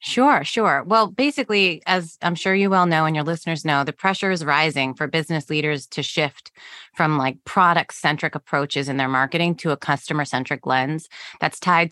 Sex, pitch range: female, 155-200 Hz